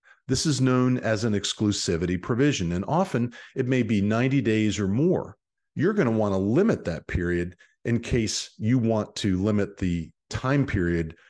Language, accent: English, American